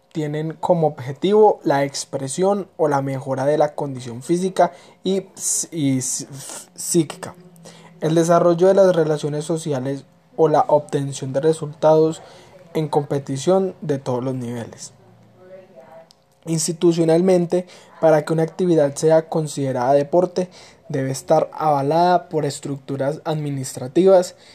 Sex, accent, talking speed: male, Colombian, 110 wpm